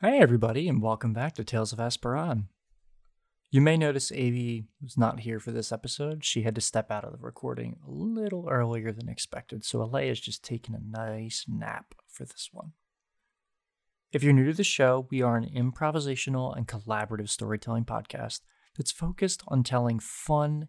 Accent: American